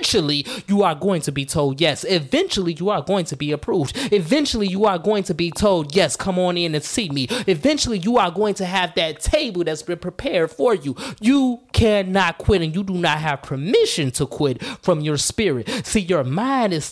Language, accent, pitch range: English, American, 145-200 Hz